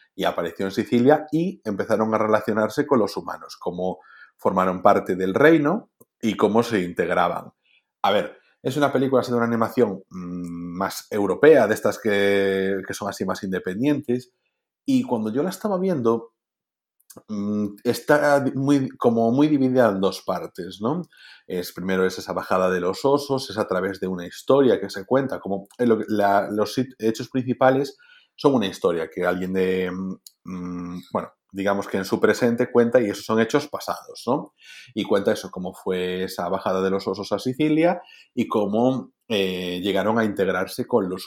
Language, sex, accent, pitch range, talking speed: Spanish, male, Spanish, 95-135 Hz, 175 wpm